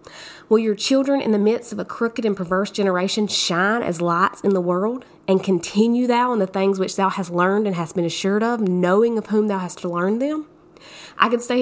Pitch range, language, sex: 180-245 Hz, English, female